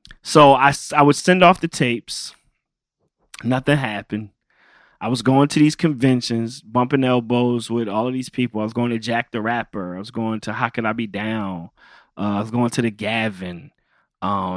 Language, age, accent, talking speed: English, 20-39, American, 195 wpm